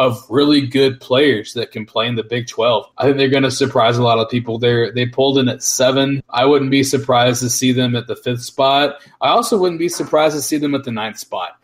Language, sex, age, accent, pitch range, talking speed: English, male, 20-39, American, 130-150 Hz, 260 wpm